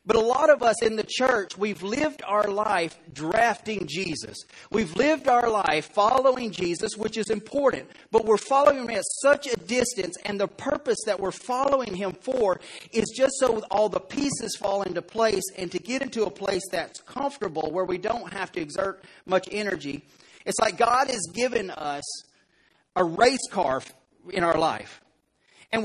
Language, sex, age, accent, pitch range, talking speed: English, male, 40-59, American, 200-245 Hz, 180 wpm